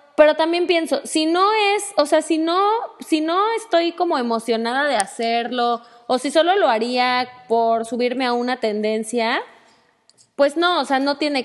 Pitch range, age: 235-305 Hz, 20-39